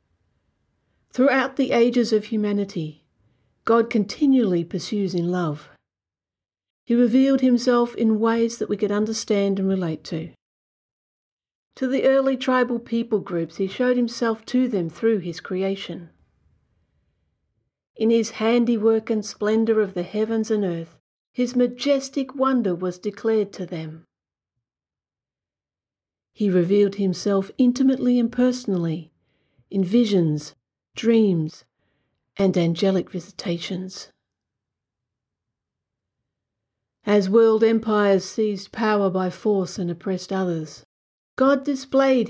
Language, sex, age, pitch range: English, female, 50-69, 170-235 Hz